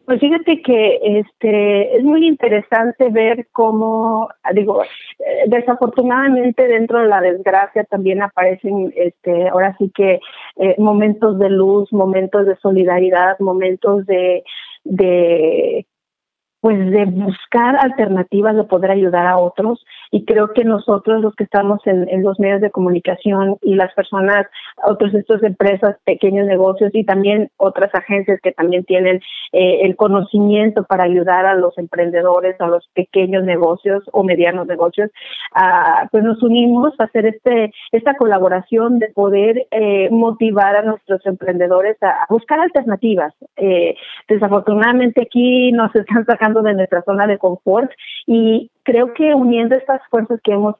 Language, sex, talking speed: English, female, 145 wpm